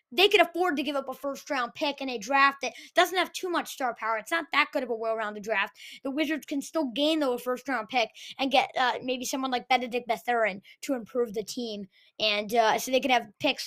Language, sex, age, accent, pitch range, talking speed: English, female, 20-39, American, 245-310 Hz, 260 wpm